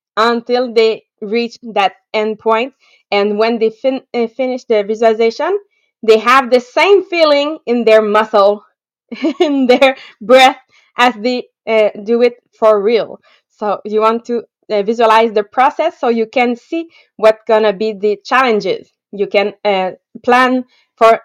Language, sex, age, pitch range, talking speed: English, female, 20-39, 215-275 Hz, 155 wpm